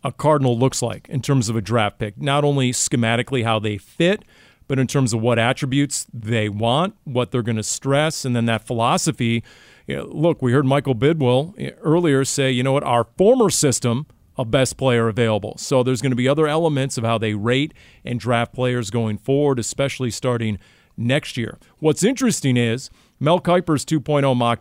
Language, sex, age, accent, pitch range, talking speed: English, male, 40-59, American, 120-145 Hz, 190 wpm